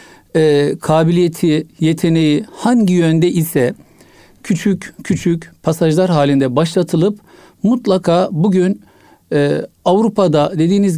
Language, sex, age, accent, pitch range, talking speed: Turkish, male, 60-79, native, 155-205 Hz, 75 wpm